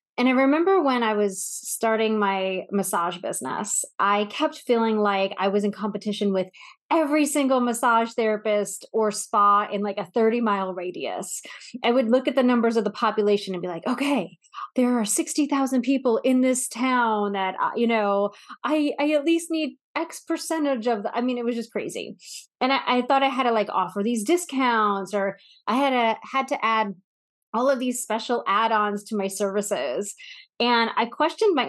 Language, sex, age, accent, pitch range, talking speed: English, female, 30-49, American, 205-260 Hz, 185 wpm